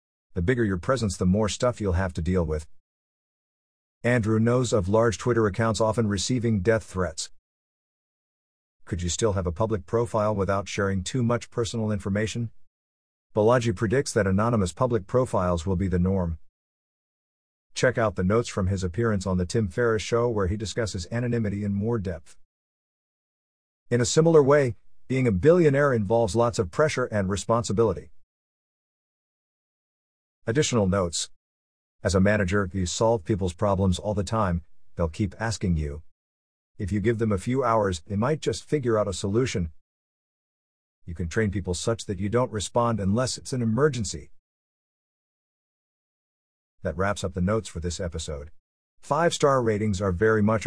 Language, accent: English, American